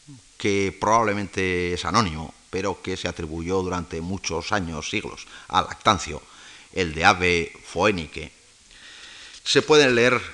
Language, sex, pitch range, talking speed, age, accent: Spanish, male, 90-110 Hz, 120 wpm, 40-59, Spanish